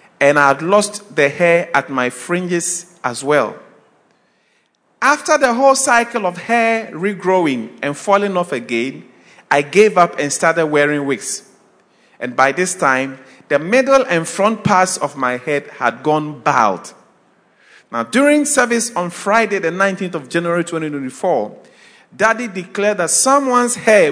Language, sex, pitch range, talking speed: English, male, 170-245 Hz, 145 wpm